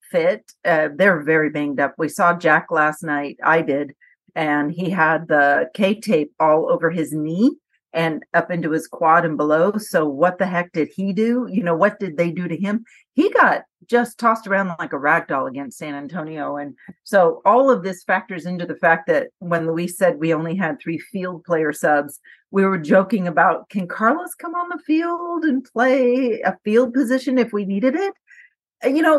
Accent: American